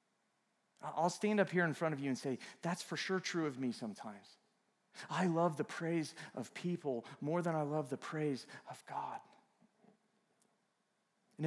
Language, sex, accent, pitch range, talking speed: English, male, American, 165-205 Hz, 170 wpm